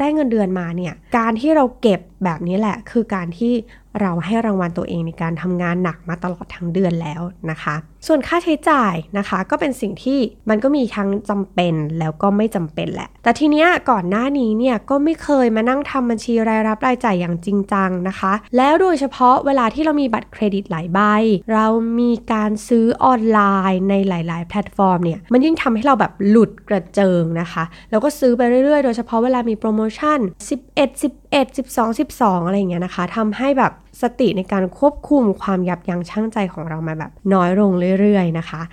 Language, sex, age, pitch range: Thai, female, 20-39, 185-250 Hz